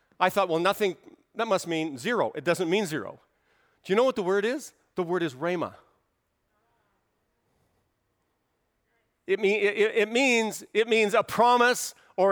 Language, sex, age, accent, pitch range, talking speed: English, male, 50-69, American, 210-260 Hz, 155 wpm